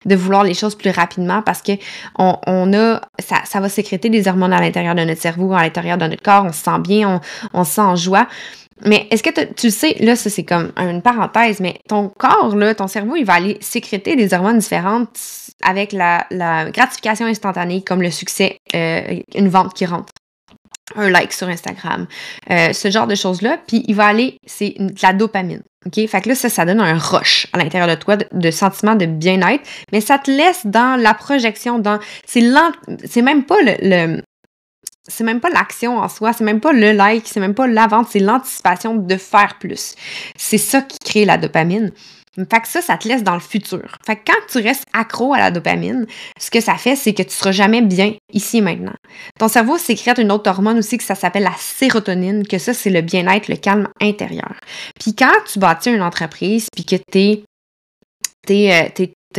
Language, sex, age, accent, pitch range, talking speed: French, female, 20-39, Canadian, 185-230 Hz, 215 wpm